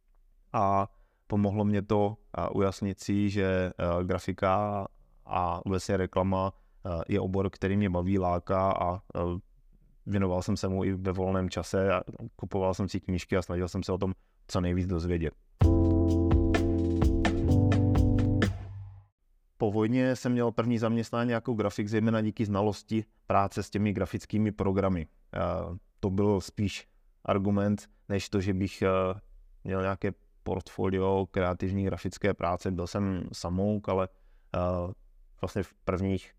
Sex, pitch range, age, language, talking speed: male, 90-100 Hz, 20-39, Czech, 125 wpm